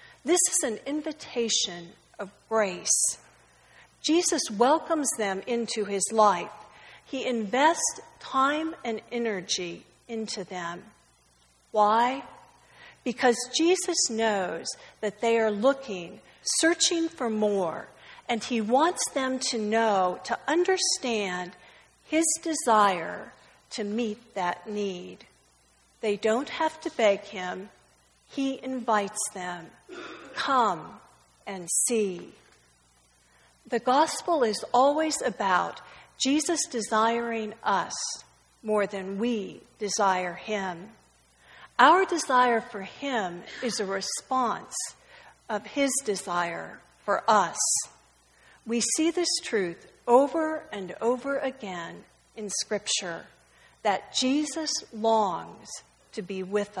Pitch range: 195-270 Hz